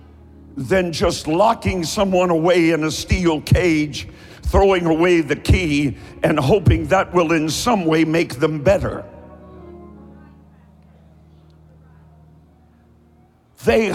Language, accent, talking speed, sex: English, American, 105 wpm, male